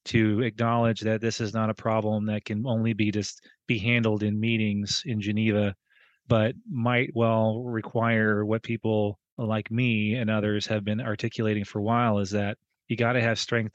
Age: 30-49